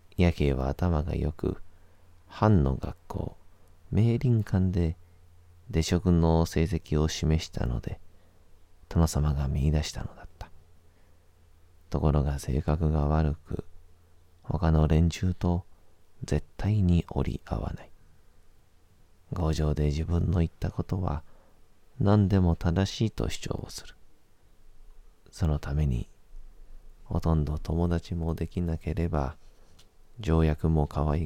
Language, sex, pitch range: Japanese, male, 80-90 Hz